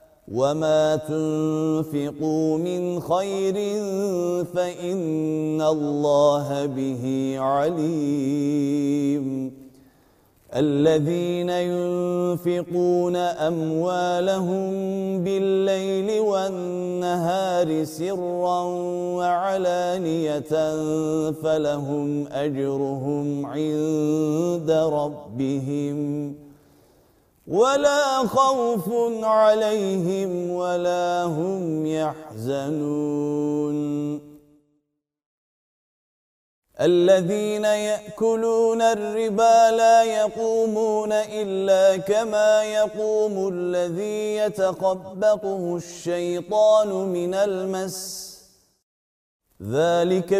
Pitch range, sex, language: 155-195 Hz, male, Turkish